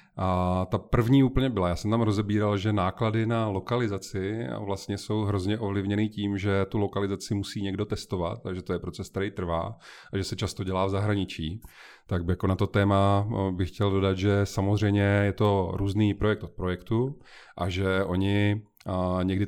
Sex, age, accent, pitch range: male, 30-49, native, 95-105 Hz